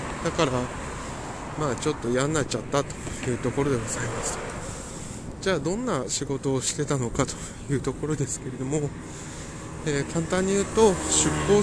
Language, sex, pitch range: Japanese, male, 120-150 Hz